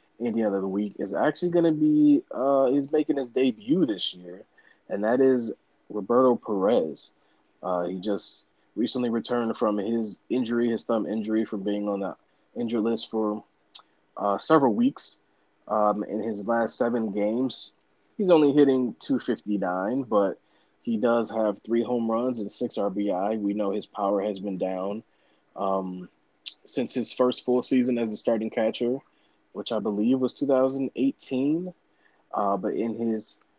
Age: 20-39